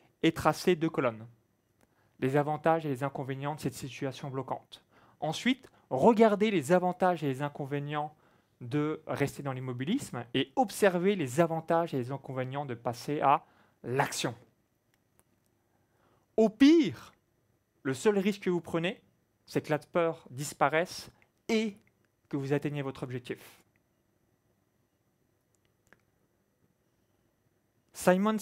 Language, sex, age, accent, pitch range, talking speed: French, male, 30-49, French, 125-180 Hz, 115 wpm